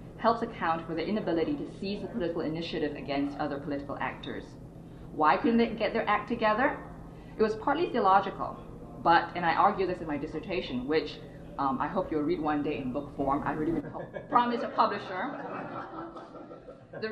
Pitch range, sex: 150-215 Hz, female